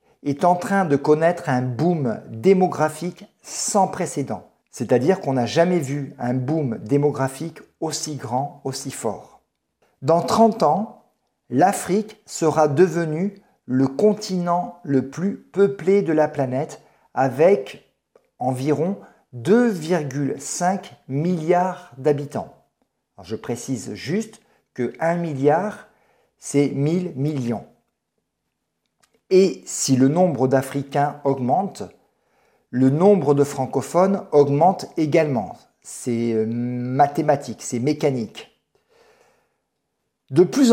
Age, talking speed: 50-69, 100 wpm